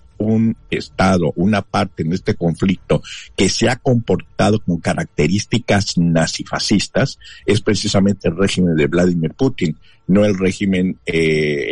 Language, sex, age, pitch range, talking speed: Spanish, male, 50-69, 85-115 Hz, 130 wpm